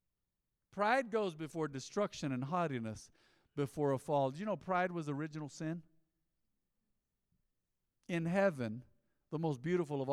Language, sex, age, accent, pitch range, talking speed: English, male, 50-69, American, 120-165 Hz, 130 wpm